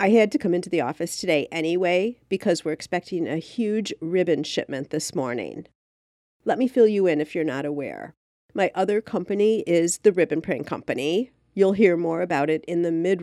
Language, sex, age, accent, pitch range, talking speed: English, female, 50-69, American, 160-200 Hz, 195 wpm